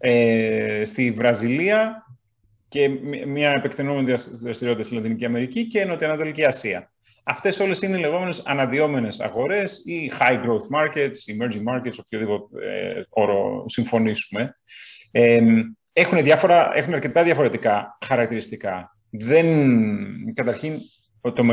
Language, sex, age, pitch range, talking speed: Greek, male, 30-49, 120-160 Hz, 95 wpm